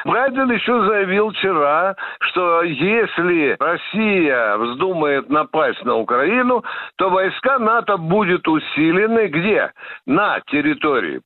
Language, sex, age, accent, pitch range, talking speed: Russian, male, 60-79, native, 170-220 Hz, 100 wpm